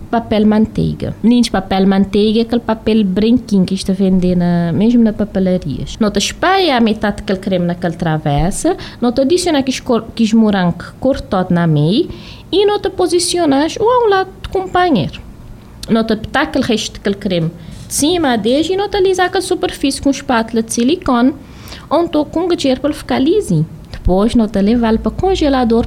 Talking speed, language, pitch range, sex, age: 165 wpm, Portuguese, 205-310 Hz, female, 20-39